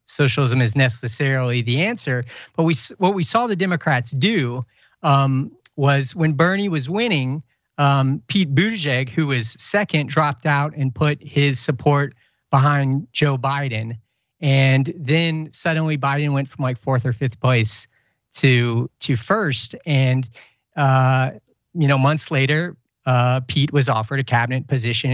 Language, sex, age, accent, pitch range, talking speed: English, male, 40-59, American, 130-165 Hz, 145 wpm